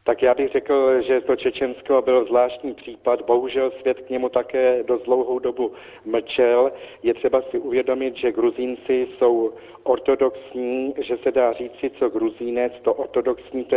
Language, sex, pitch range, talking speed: Czech, male, 120-135 Hz, 155 wpm